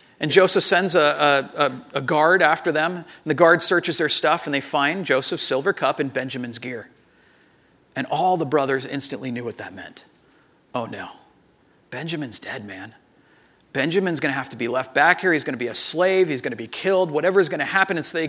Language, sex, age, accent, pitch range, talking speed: English, male, 40-59, American, 140-185 Hz, 215 wpm